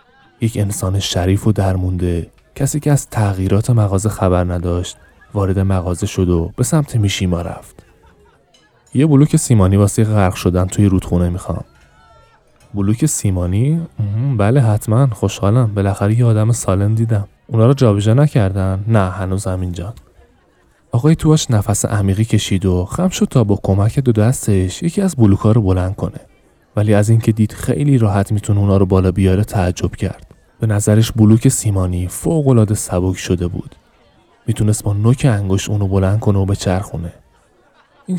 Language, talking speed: Persian, 155 wpm